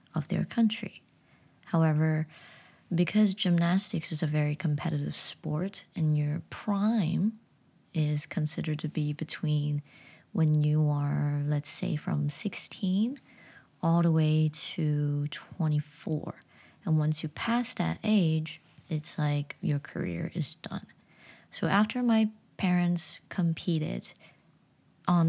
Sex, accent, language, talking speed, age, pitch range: female, American, English, 115 wpm, 20-39, 150-185 Hz